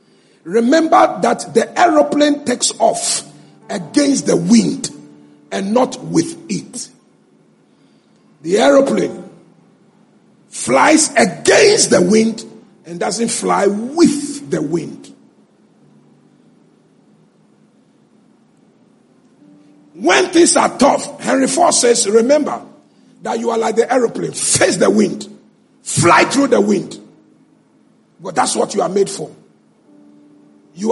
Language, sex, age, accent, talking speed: English, male, 50-69, Nigerian, 105 wpm